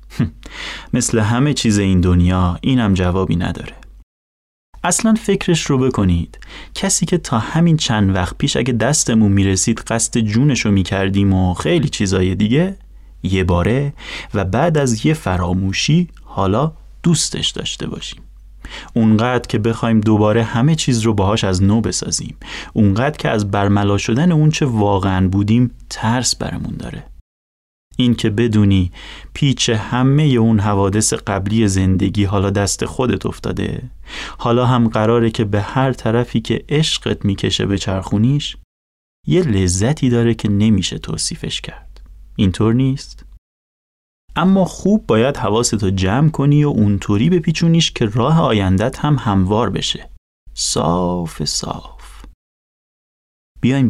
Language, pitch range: Persian, 95-125 Hz